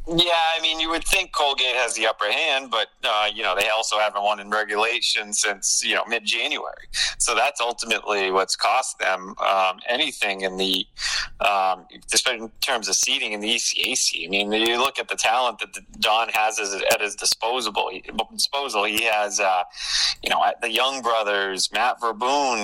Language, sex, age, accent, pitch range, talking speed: English, male, 30-49, American, 105-120 Hz, 180 wpm